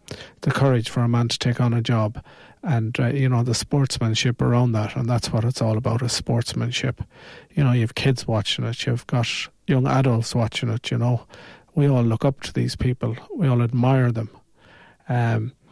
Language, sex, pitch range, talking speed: English, male, 115-135 Hz, 205 wpm